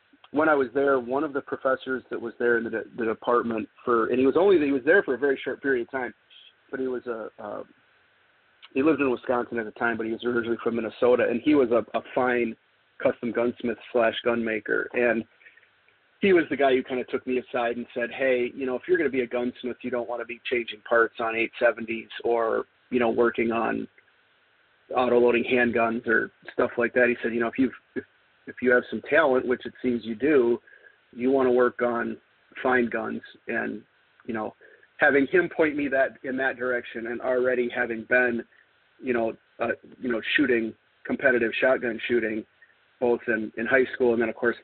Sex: male